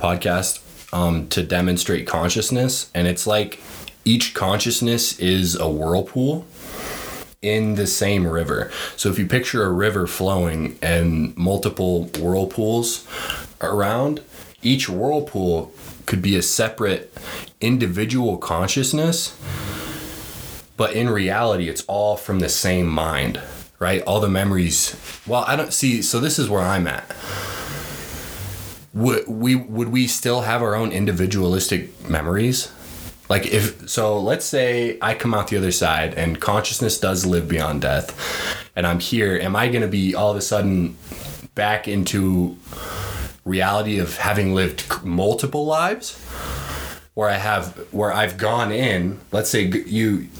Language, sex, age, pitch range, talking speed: English, male, 20-39, 90-110 Hz, 140 wpm